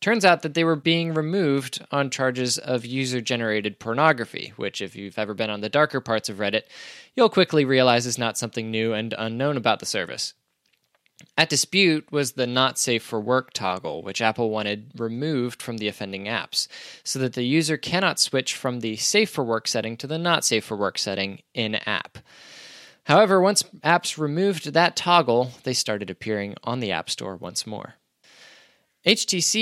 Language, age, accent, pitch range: English, 10-29, American, 115-155 Hz